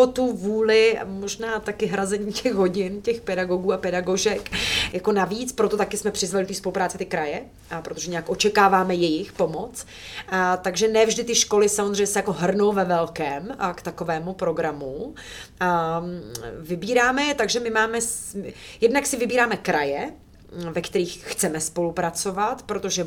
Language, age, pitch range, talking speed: Czech, 30-49, 180-210 Hz, 145 wpm